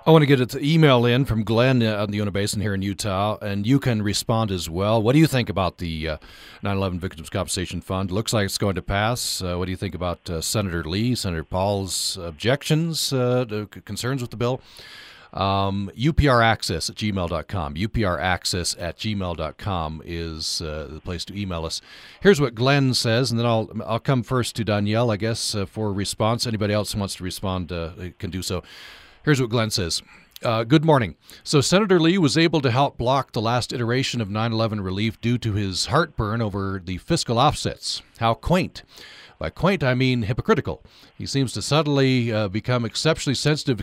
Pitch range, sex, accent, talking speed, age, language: 95-125 Hz, male, American, 190 wpm, 40-59, English